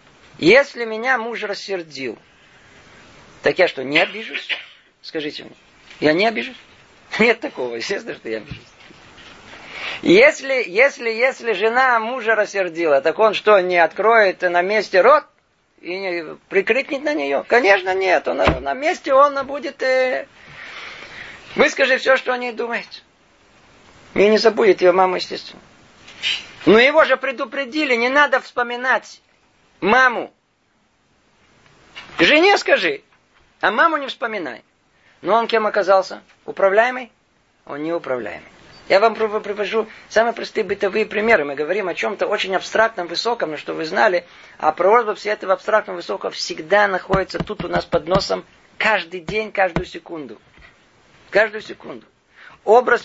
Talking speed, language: 130 wpm, Russian